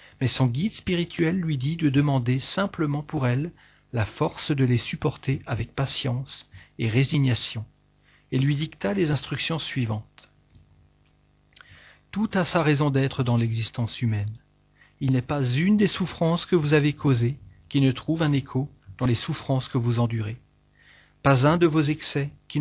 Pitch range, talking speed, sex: 120-150 Hz, 160 wpm, male